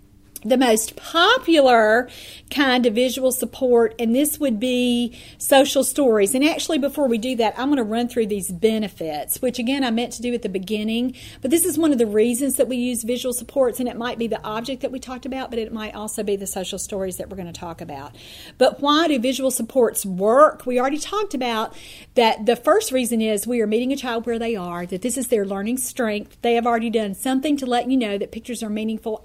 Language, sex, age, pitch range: English, female, 40-59, 220-260 Hz